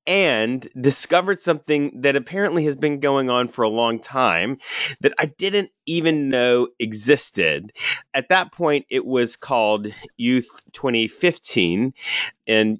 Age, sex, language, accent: 30-49, male, English, American